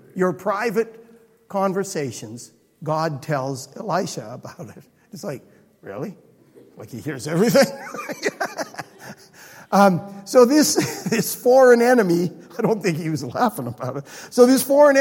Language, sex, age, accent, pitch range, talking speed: English, male, 60-79, American, 165-235 Hz, 130 wpm